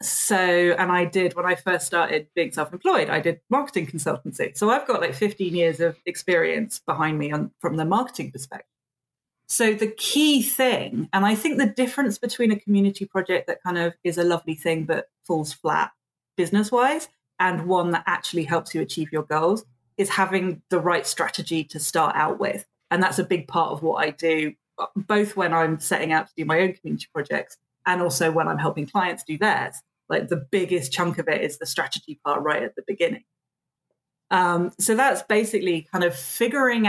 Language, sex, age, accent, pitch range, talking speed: English, female, 30-49, British, 165-215 Hz, 195 wpm